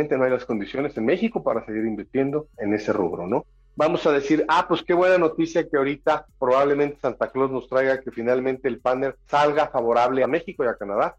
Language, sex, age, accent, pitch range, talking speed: Spanish, male, 40-59, Mexican, 125-155 Hz, 210 wpm